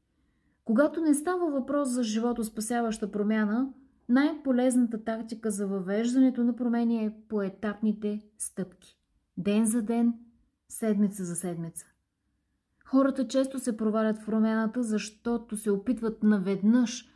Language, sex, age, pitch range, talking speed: Bulgarian, female, 30-49, 200-255 Hz, 110 wpm